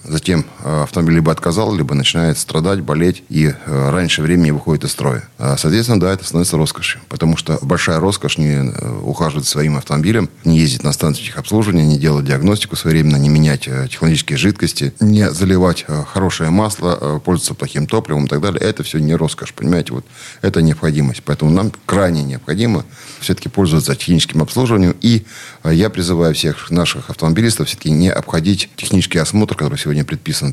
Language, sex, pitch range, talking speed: Russian, male, 75-95 Hz, 160 wpm